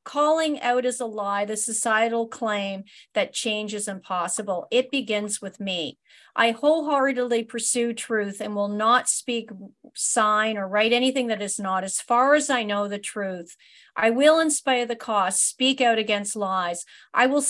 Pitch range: 210-265 Hz